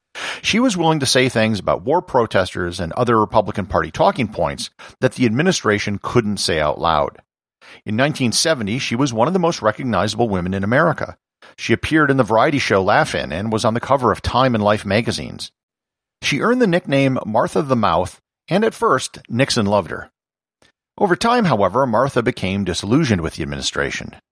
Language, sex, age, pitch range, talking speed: English, male, 50-69, 100-140 Hz, 180 wpm